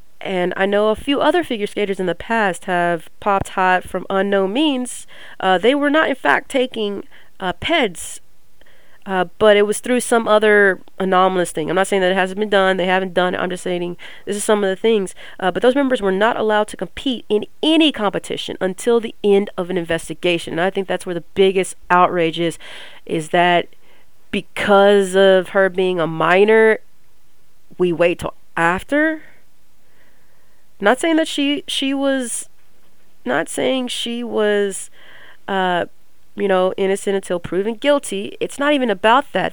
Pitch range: 185-240 Hz